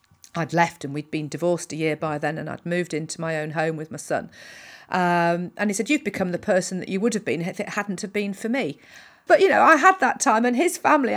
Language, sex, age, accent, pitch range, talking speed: English, female, 50-69, British, 190-245 Hz, 270 wpm